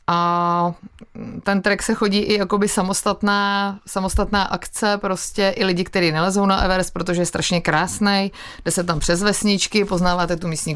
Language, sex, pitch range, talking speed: Czech, female, 175-210 Hz, 160 wpm